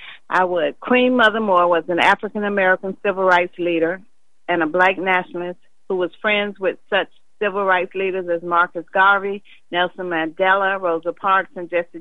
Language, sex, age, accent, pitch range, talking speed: English, female, 40-59, American, 175-205 Hz, 165 wpm